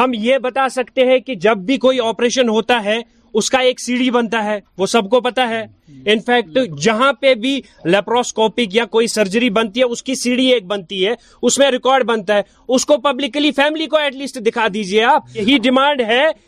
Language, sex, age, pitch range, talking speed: Urdu, male, 30-49, 225-265 Hz, 185 wpm